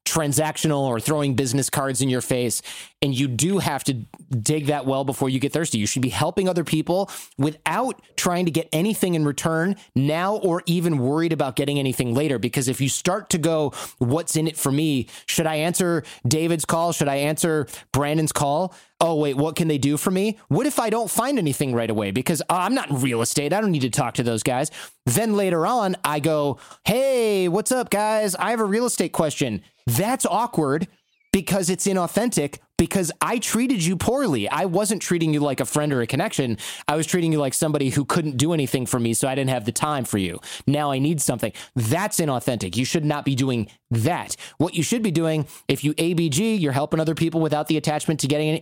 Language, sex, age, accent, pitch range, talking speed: English, male, 30-49, American, 135-170 Hz, 220 wpm